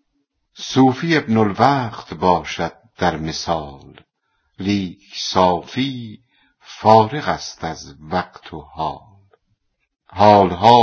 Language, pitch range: Persian, 85-110 Hz